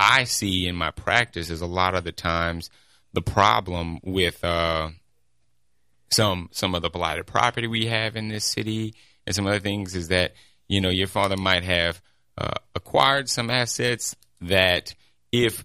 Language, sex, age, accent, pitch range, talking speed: English, male, 30-49, American, 90-110 Hz, 170 wpm